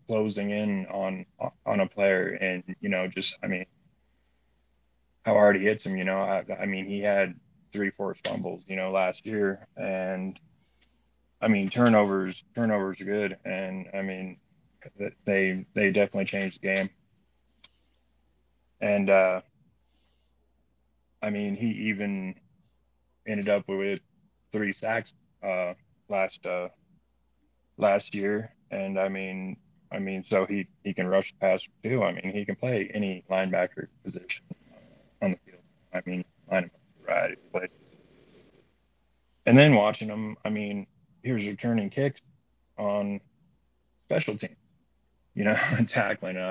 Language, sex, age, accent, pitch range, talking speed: English, male, 20-39, American, 90-100 Hz, 140 wpm